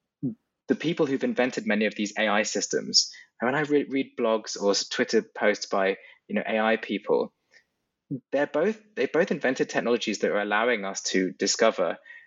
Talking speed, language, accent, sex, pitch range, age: 170 wpm, English, British, male, 105-150 Hz, 20-39